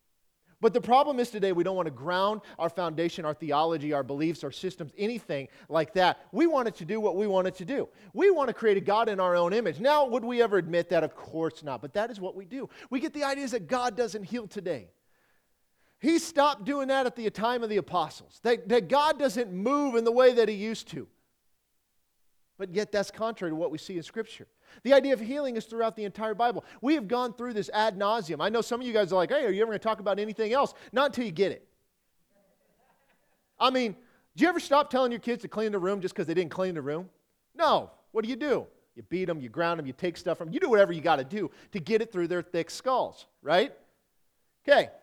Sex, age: male, 40-59